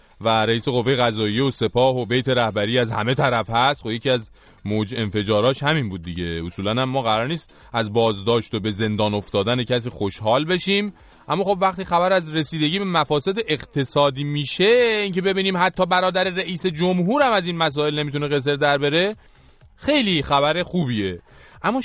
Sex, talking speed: male, 170 wpm